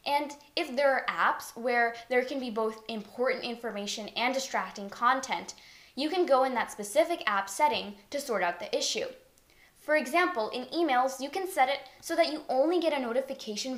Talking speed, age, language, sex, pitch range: 185 wpm, 10-29, English, female, 220-295 Hz